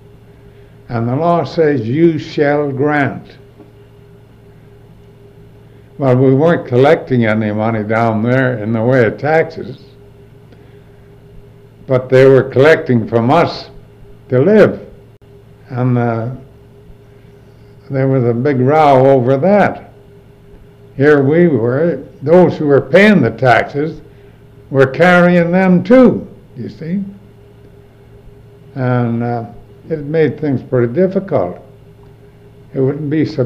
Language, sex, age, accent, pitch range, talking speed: English, male, 60-79, American, 125-145 Hz, 115 wpm